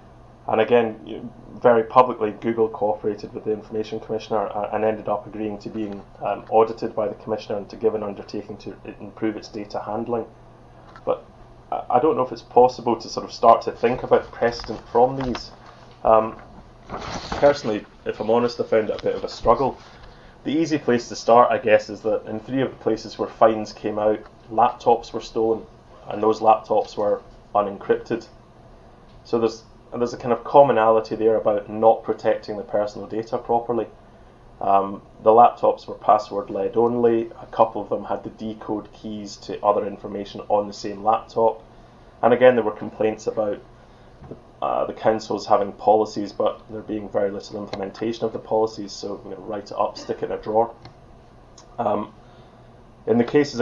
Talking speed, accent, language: 175 wpm, British, English